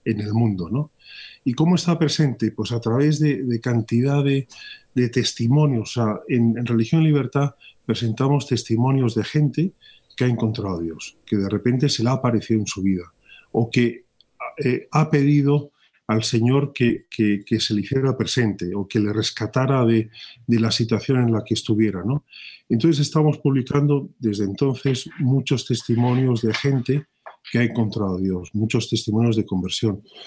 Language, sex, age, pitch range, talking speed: Spanish, male, 40-59, 110-140 Hz, 170 wpm